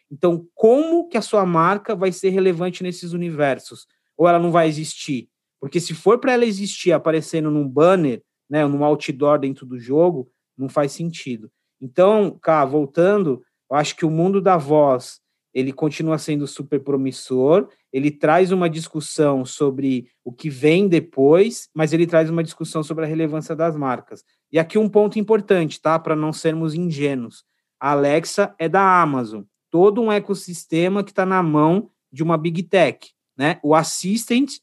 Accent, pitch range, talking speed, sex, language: Brazilian, 150-185 Hz, 170 wpm, male, Portuguese